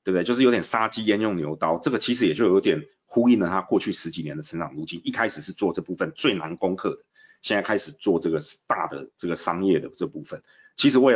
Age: 30-49